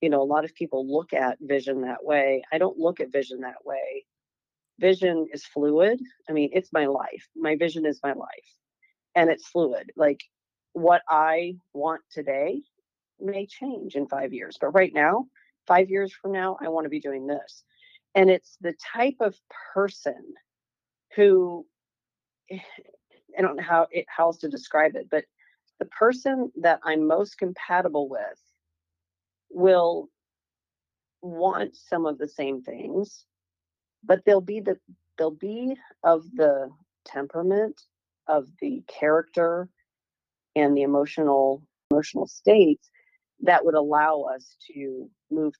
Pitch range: 145-195 Hz